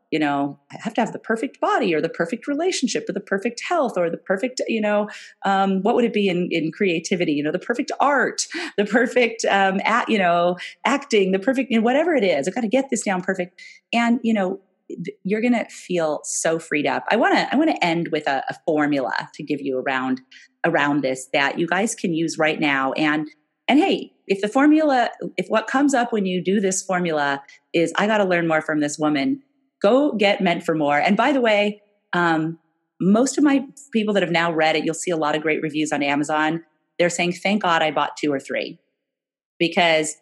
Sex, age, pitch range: female, 30-49, 155-205 Hz